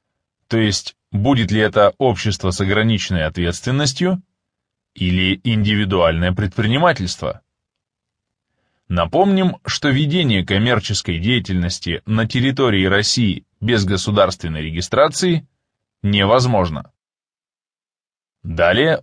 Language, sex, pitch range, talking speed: English, male, 100-135 Hz, 80 wpm